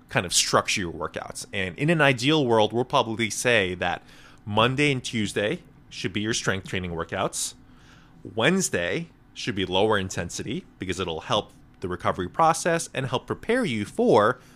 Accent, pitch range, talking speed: American, 95-130 Hz, 160 wpm